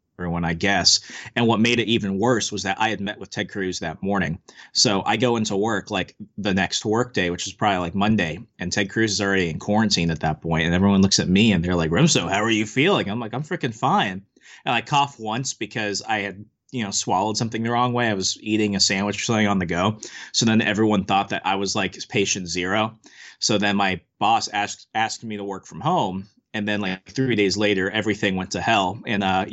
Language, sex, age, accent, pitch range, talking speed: English, male, 30-49, American, 95-115 Hz, 240 wpm